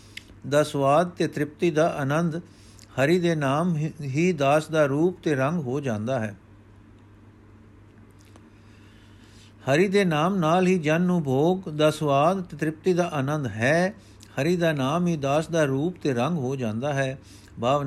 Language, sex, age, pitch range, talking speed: Punjabi, male, 50-69, 125-170 Hz, 150 wpm